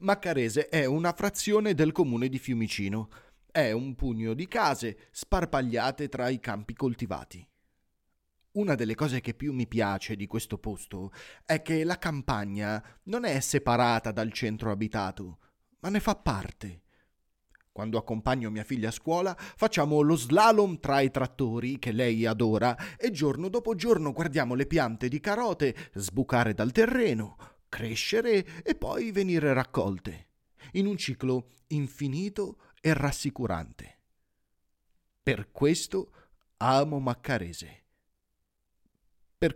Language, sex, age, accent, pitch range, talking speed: Italian, male, 30-49, native, 110-160 Hz, 130 wpm